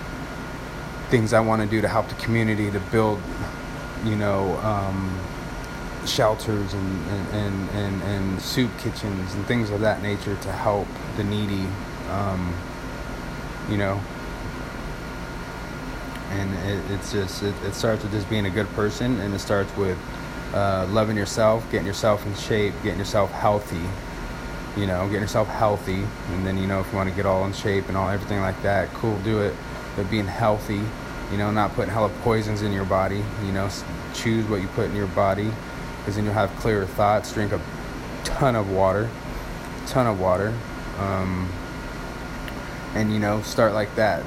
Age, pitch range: 20-39, 95-110 Hz